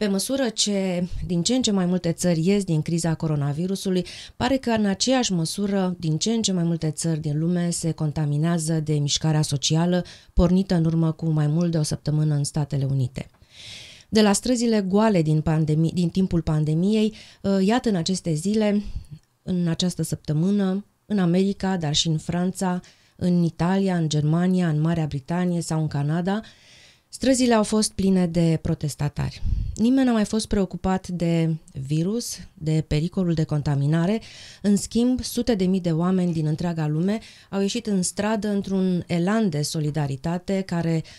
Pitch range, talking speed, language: 155-195 Hz, 165 wpm, Romanian